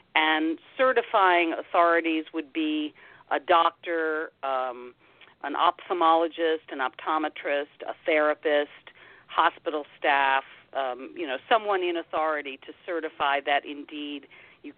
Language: English